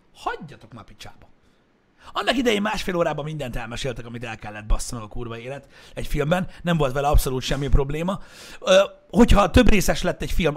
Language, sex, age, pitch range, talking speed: Hungarian, male, 60-79, 120-165 Hz, 170 wpm